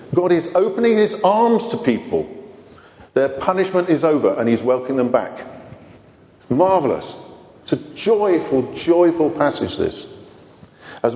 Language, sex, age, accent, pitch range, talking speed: English, male, 50-69, British, 135-215 Hz, 130 wpm